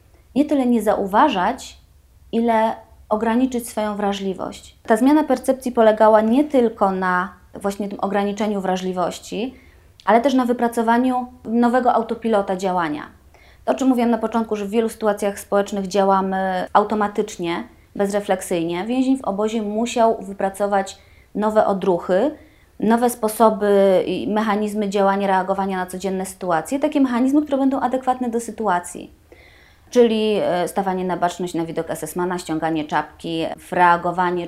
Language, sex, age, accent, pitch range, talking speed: Polish, female, 20-39, native, 175-225 Hz, 125 wpm